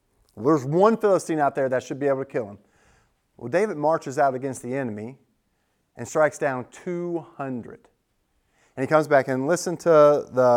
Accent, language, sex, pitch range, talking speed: American, English, male, 135-180 Hz, 175 wpm